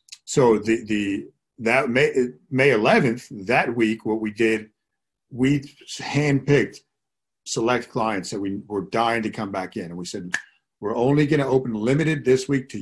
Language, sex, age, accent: English, male, 50-69, American